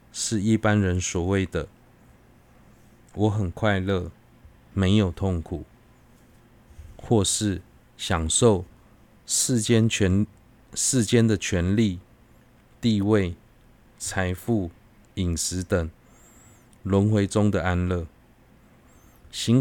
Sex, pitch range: male, 90-115 Hz